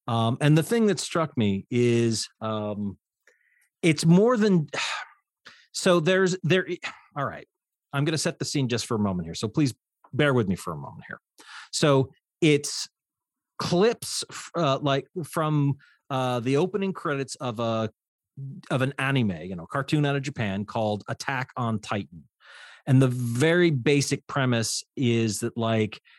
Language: English